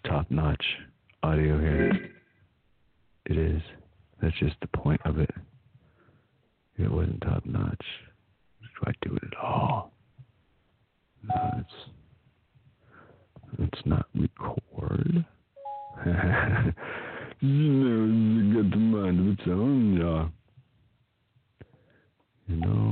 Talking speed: 85 wpm